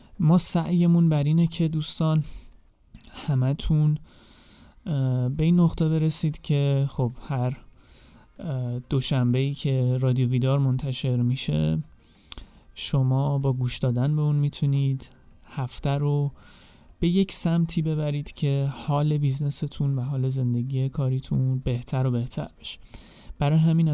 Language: Persian